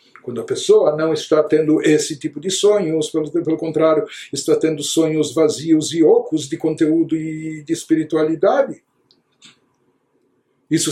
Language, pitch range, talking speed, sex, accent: Portuguese, 150-195 Hz, 135 wpm, male, Brazilian